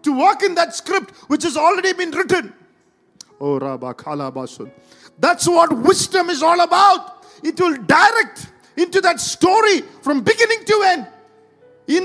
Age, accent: 50-69, Indian